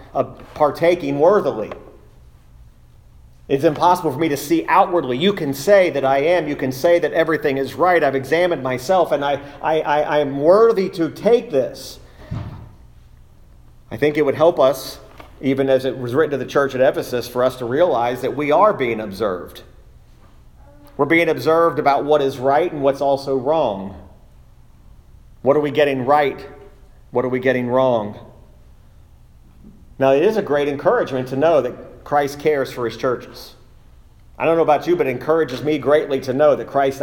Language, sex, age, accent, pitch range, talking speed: English, male, 40-59, American, 130-165 Hz, 175 wpm